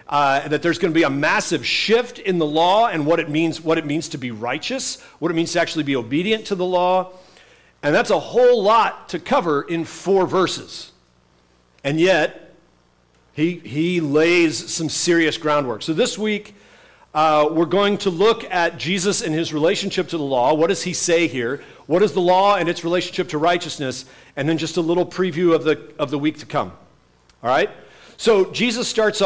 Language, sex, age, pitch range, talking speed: English, male, 50-69, 145-190 Hz, 200 wpm